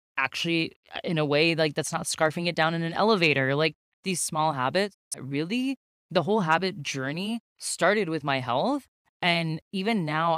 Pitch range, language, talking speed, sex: 140-180 Hz, English, 170 wpm, female